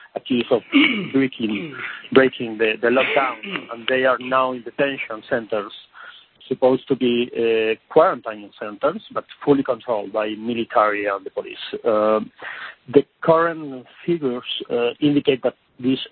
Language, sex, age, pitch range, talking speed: English, male, 40-59, 115-130 Hz, 135 wpm